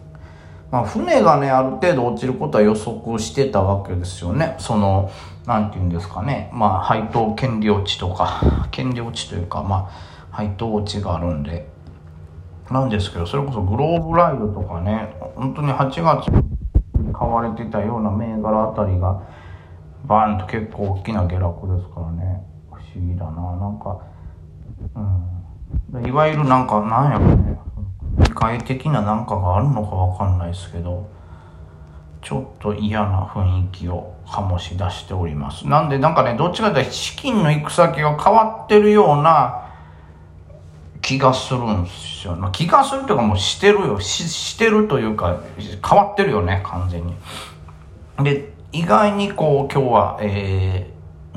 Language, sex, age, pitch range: Japanese, male, 40-59, 85-120 Hz